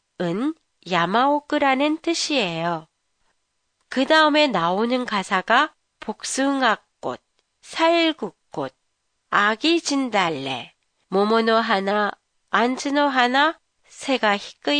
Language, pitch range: Japanese, 205-300 Hz